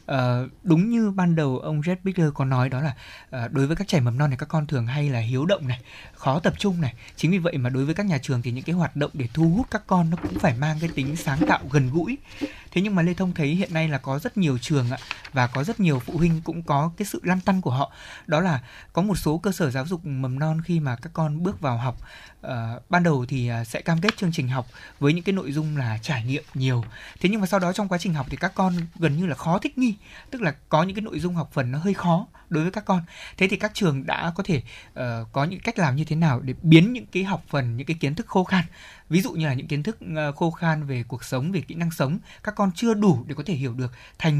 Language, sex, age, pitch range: Vietnamese, male, 20-39, 135-175 Hz